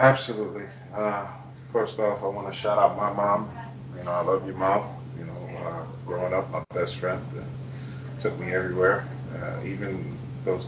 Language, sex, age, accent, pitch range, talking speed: English, male, 30-49, American, 125-135 Hz, 180 wpm